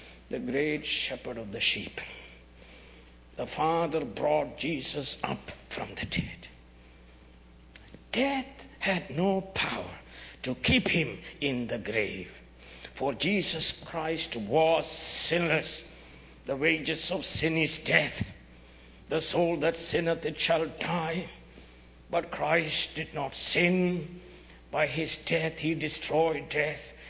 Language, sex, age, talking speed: English, male, 60-79, 115 wpm